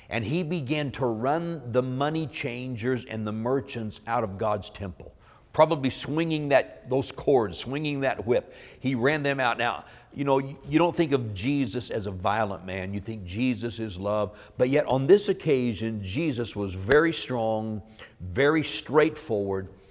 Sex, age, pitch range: male, 50-69, 105-140 Hz